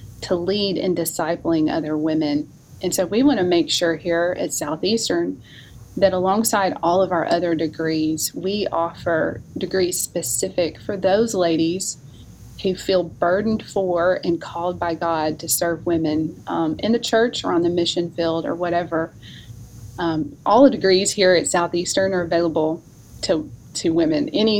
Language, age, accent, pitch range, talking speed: English, 30-49, American, 165-195 Hz, 155 wpm